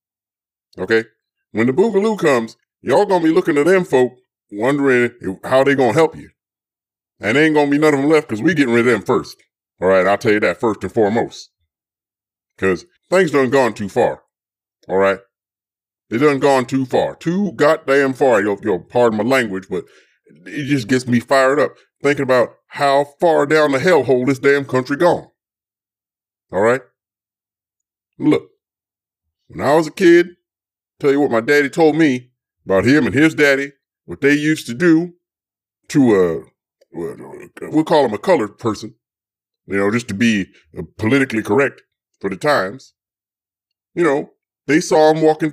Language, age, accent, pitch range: English, 40-59, American, 100-155 Hz